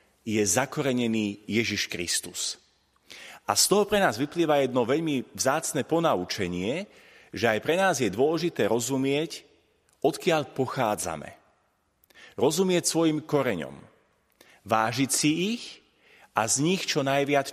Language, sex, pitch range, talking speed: Slovak, male, 120-165 Hz, 115 wpm